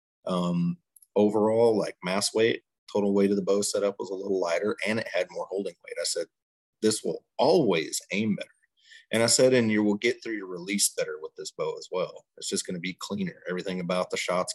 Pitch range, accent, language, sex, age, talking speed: 95-120 Hz, American, English, male, 30-49, 225 wpm